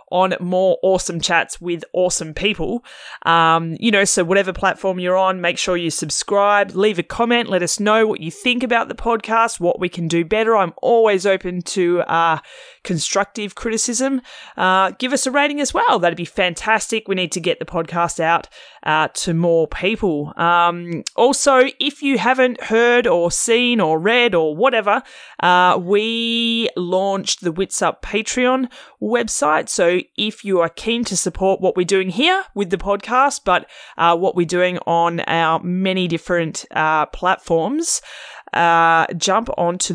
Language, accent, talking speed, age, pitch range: English, Australian, 170 wpm, 30-49, 170-230 Hz